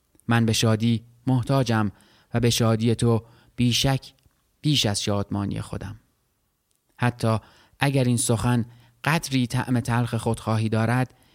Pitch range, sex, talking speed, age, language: 110-130 Hz, male, 115 wpm, 30-49, Persian